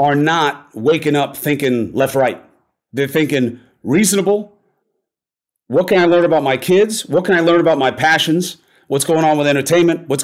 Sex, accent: male, American